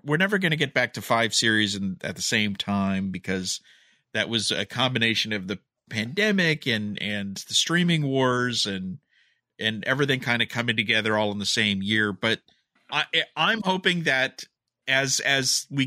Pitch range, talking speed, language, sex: 110-140 Hz, 180 wpm, English, male